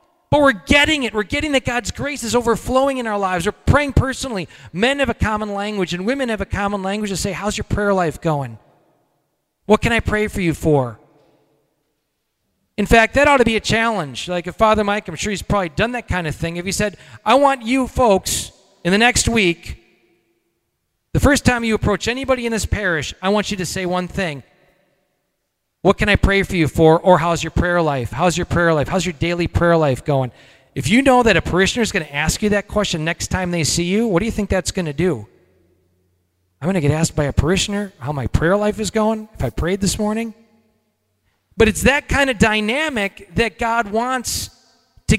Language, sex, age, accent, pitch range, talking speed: English, male, 40-59, American, 160-220 Hz, 220 wpm